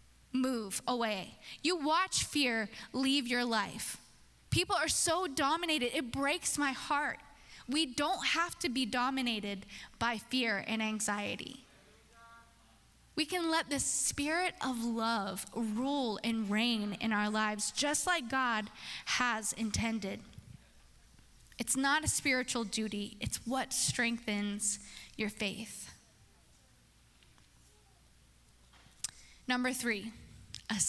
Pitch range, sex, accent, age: 205-270 Hz, female, American, 10-29